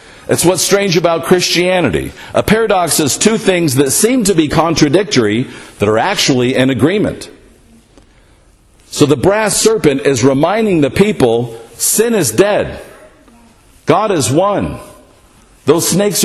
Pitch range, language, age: 135-190 Hz, English, 50-69